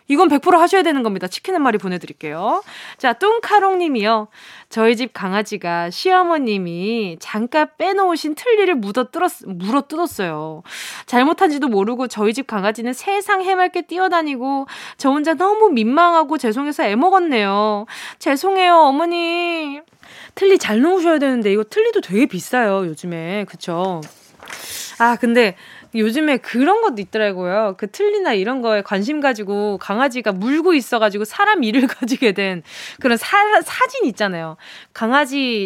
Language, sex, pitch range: Korean, female, 205-315 Hz